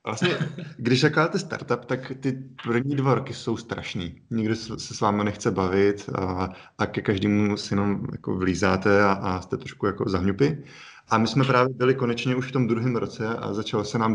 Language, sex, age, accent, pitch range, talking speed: Czech, male, 30-49, native, 95-110 Hz, 195 wpm